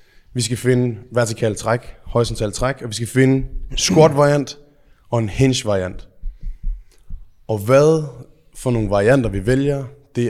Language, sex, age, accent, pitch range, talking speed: Danish, male, 20-39, native, 115-150 Hz, 150 wpm